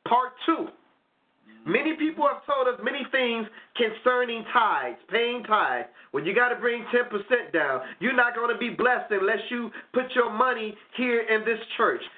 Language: English